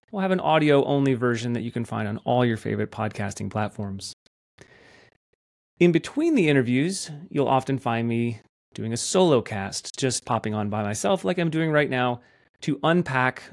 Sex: male